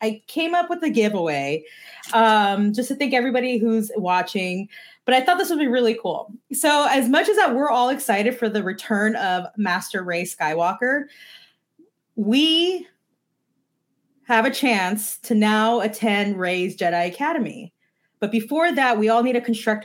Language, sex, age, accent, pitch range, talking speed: English, female, 20-39, American, 185-245 Hz, 165 wpm